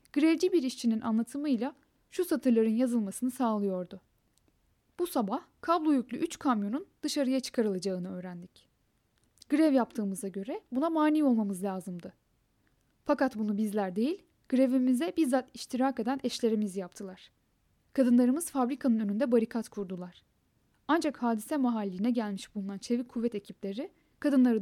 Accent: native